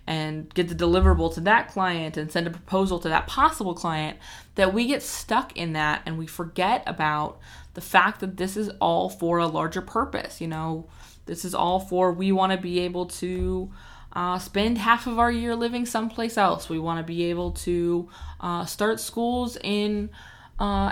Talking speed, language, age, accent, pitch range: 190 wpm, English, 20-39, American, 170-205 Hz